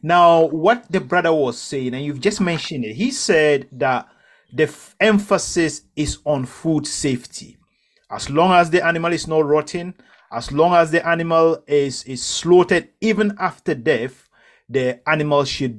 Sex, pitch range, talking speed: male, 130-170 Hz, 165 wpm